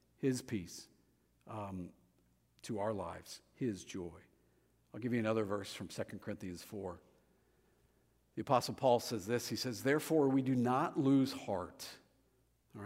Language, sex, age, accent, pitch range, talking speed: English, male, 50-69, American, 115-150 Hz, 145 wpm